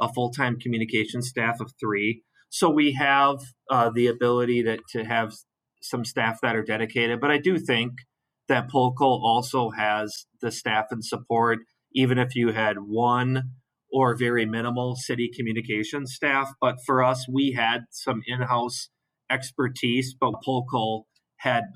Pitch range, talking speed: 115-130 Hz, 150 wpm